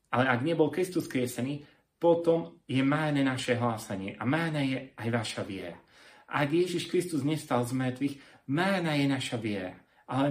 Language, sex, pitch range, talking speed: Slovak, male, 115-145 Hz, 155 wpm